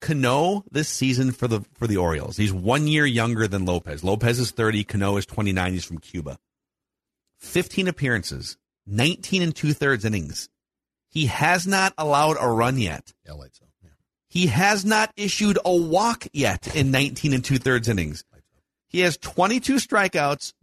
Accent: American